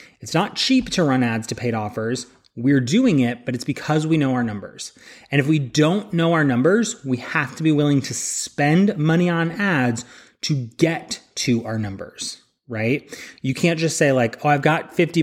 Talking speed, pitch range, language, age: 200 wpm, 125-165 Hz, English, 30-49